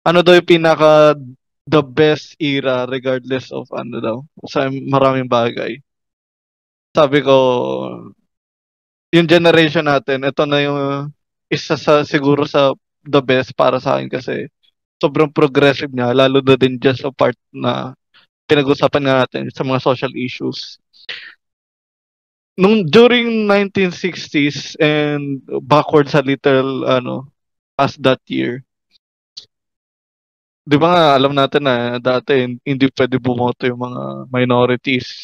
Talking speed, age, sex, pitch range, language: 125 wpm, 20-39, male, 130-160 Hz, Filipino